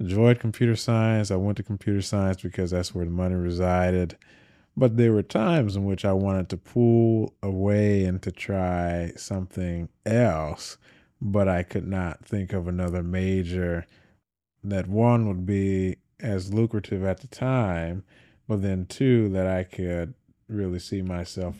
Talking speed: 155 wpm